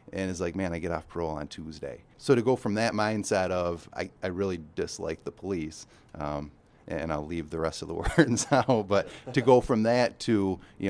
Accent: American